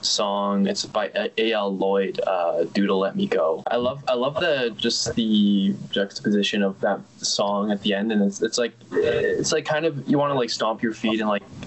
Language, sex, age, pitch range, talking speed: English, male, 10-29, 100-120 Hz, 210 wpm